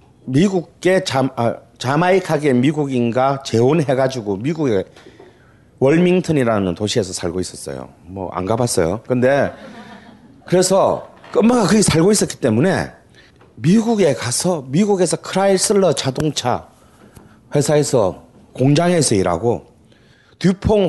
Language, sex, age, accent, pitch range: Korean, male, 40-59, native, 125-210 Hz